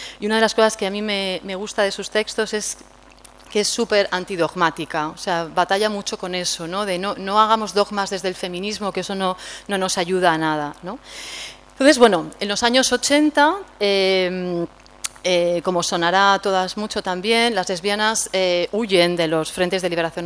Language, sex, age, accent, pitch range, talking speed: Spanish, female, 30-49, Spanish, 175-210 Hz, 195 wpm